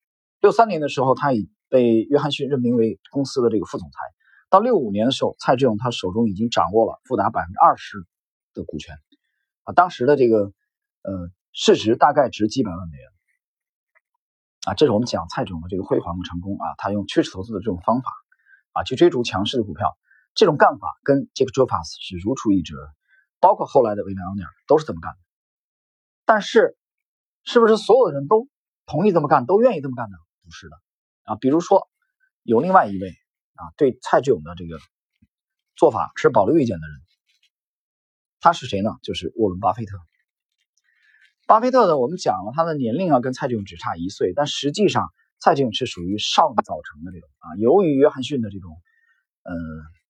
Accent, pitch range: native, 95-145 Hz